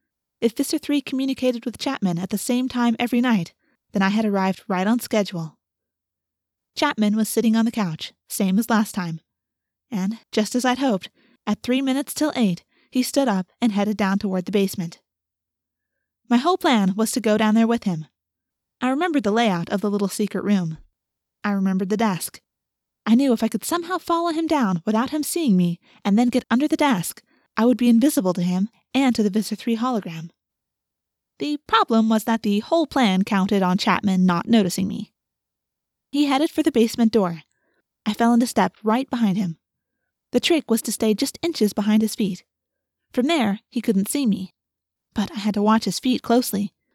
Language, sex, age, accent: English, female, 20-39, American